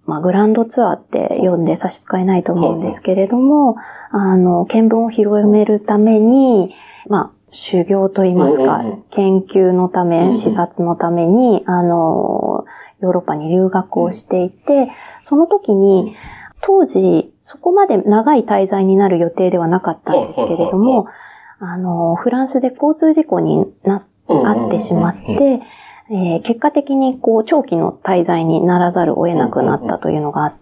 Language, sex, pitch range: Japanese, female, 180-255 Hz